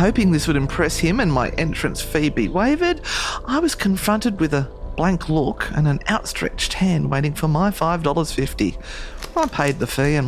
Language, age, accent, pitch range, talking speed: English, 40-59, Australian, 145-205 Hz, 180 wpm